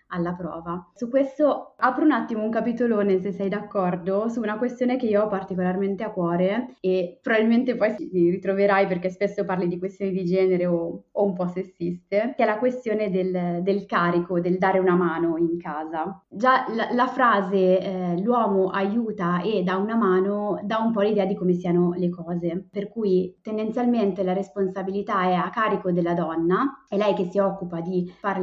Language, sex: Italian, female